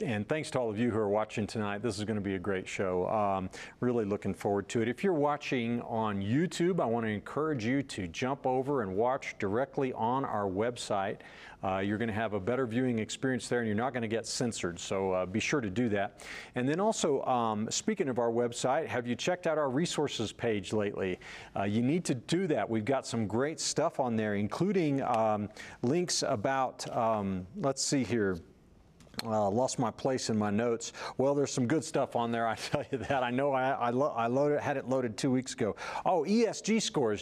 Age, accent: 40-59, American